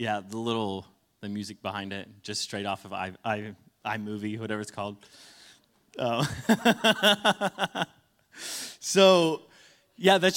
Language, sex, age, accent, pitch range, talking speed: English, male, 30-49, American, 110-145 Hz, 120 wpm